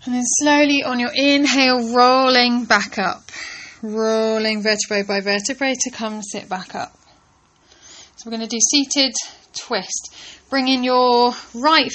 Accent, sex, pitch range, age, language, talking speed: British, female, 230-275 Hz, 10-29, English, 140 wpm